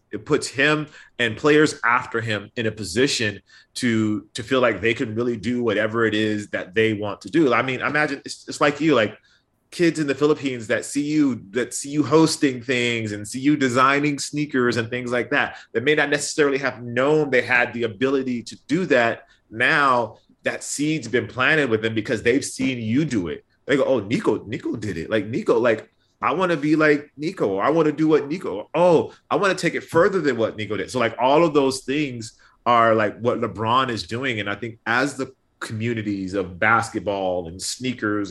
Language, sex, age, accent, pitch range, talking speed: English, male, 30-49, American, 110-135 Hz, 215 wpm